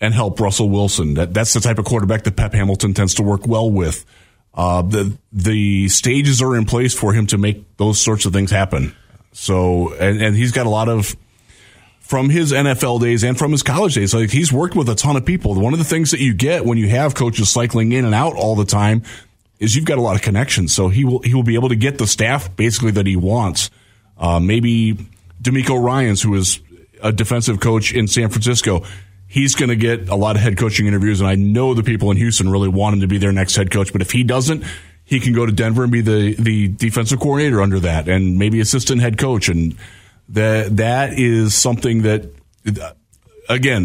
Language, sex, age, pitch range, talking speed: English, male, 30-49, 100-120 Hz, 225 wpm